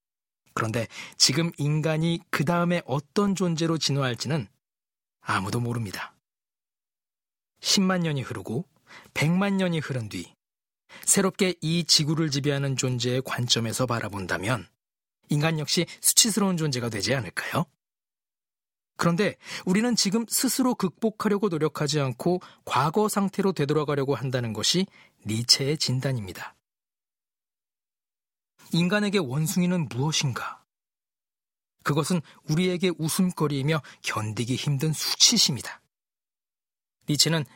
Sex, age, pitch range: male, 40-59, 130-185 Hz